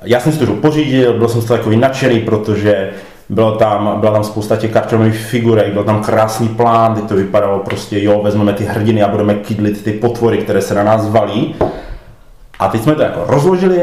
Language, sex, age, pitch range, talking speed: Czech, male, 30-49, 110-150 Hz, 210 wpm